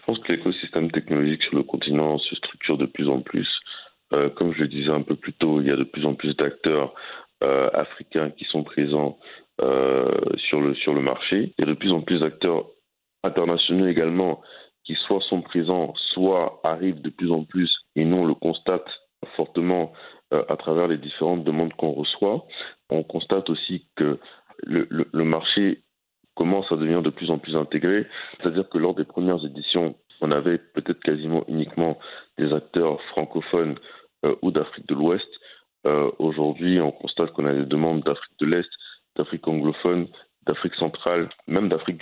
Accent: French